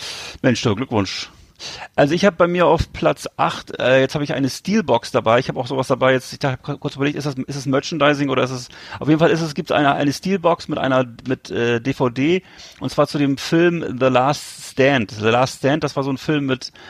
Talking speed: 235 wpm